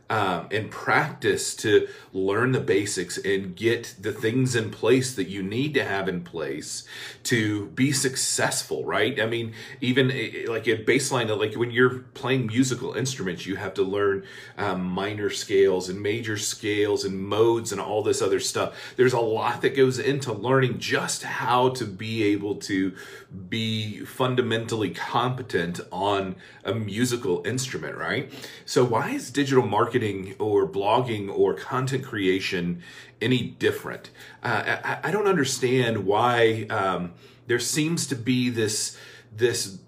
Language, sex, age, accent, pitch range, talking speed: English, male, 40-59, American, 105-130 Hz, 150 wpm